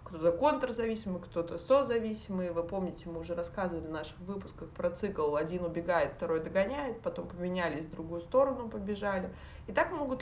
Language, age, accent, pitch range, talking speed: Russian, 20-39, native, 190-255 Hz, 160 wpm